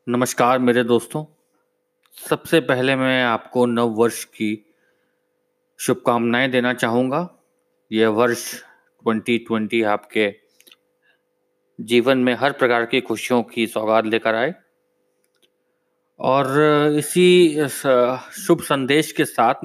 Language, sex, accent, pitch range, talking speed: Hindi, male, native, 120-155 Hz, 100 wpm